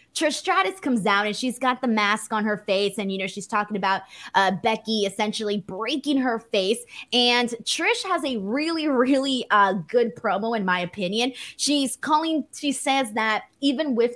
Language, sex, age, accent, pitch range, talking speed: English, female, 20-39, American, 200-265 Hz, 180 wpm